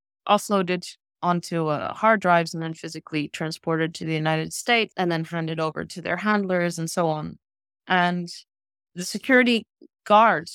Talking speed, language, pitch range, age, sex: 155 wpm, English, 160-185 Hz, 30-49, female